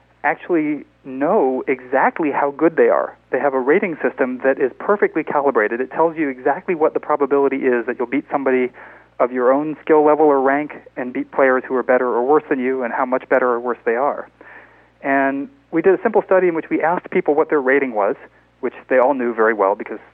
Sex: male